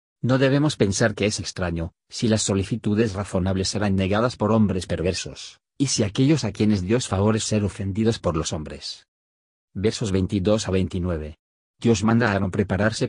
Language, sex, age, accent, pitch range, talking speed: Spanish, male, 50-69, Spanish, 90-110 Hz, 165 wpm